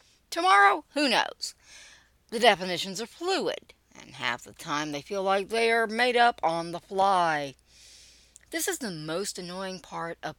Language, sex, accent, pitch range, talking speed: English, female, American, 145-245 Hz, 160 wpm